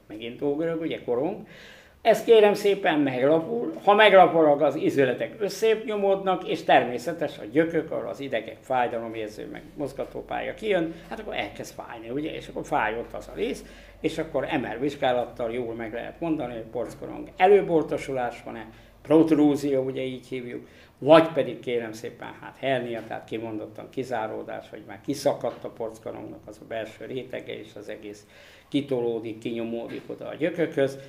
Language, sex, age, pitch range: Hungarian, male, 60-79, 120-170 Hz